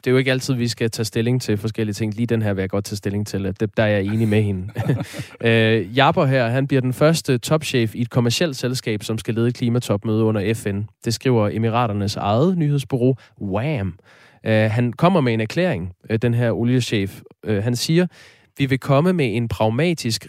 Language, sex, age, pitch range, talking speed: Danish, male, 20-39, 105-130 Hz, 205 wpm